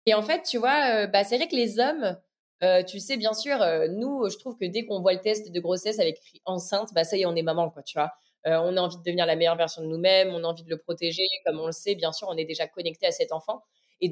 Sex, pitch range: female, 170-215 Hz